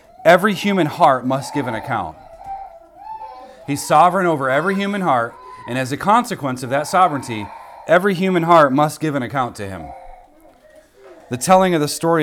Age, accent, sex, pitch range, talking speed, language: 30-49, American, male, 110-155 Hz, 165 wpm, English